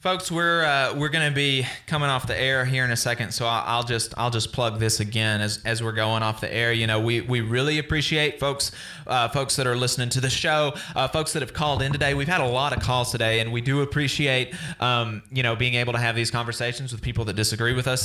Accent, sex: American, male